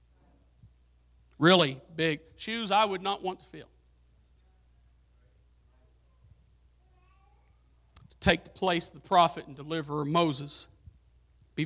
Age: 50-69